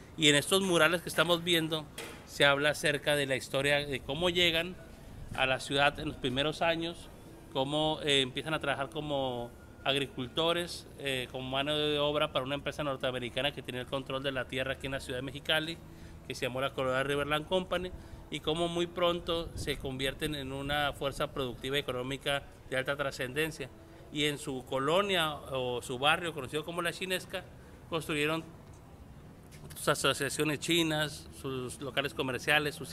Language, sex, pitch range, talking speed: Spanish, male, 135-155 Hz, 170 wpm